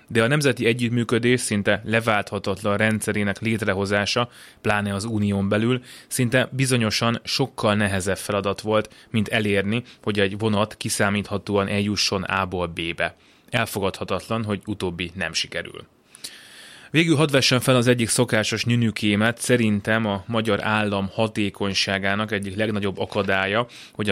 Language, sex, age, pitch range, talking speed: Hungarian, male, 20-39, 100-115 Hz, 120 wpm